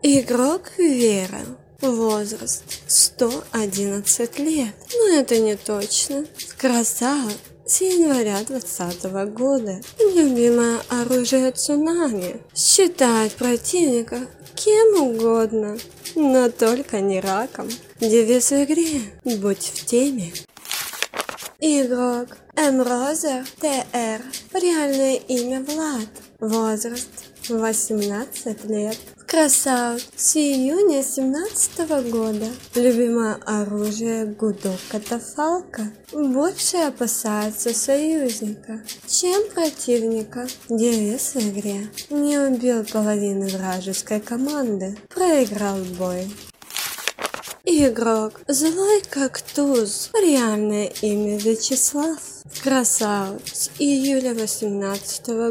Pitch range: 215-280 Hz